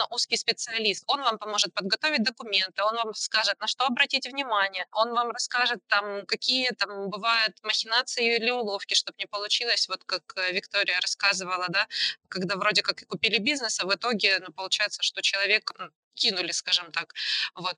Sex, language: female, Ukrainian